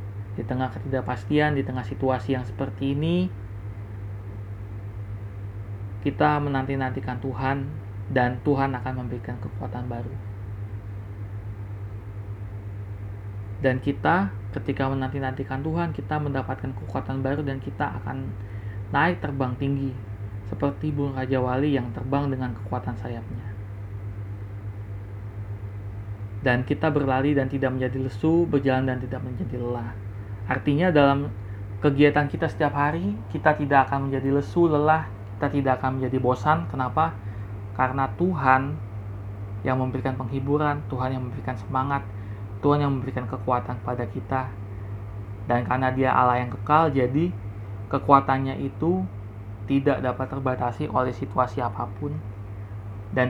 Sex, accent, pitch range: male, native, 100-135 Hz